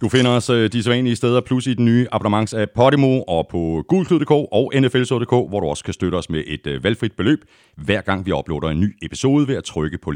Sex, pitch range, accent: male, 85-125 Hz, native